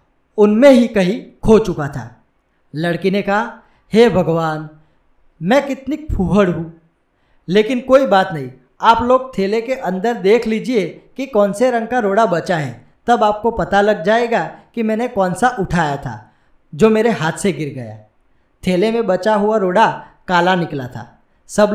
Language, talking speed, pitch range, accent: Gujarati, 170 wpm, 165-235 Hz, native